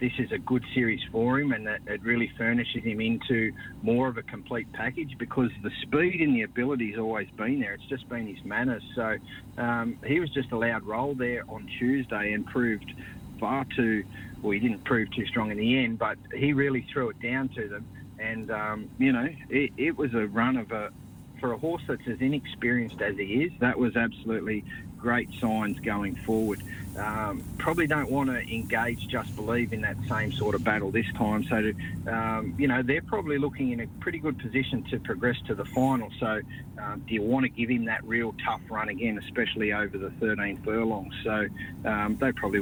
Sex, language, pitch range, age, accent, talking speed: male, English, 105-125 Hz, 30-49, Australian, 210 wpm